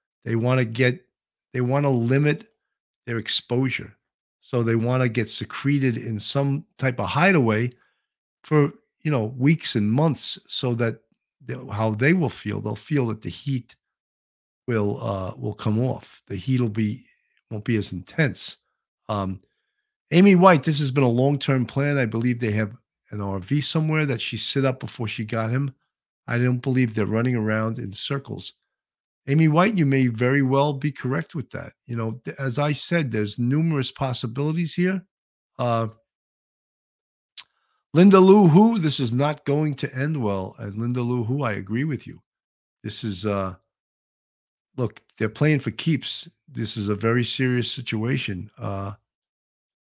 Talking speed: 165 wpm